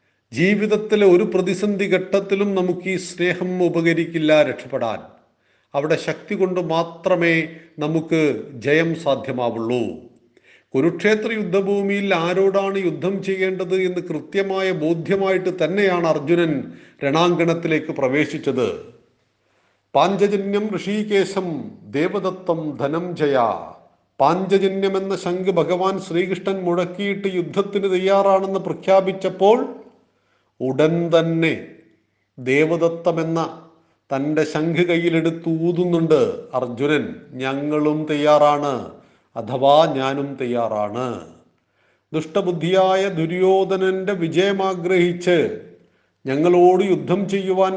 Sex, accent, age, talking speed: male, native, 40-59, 75 wpm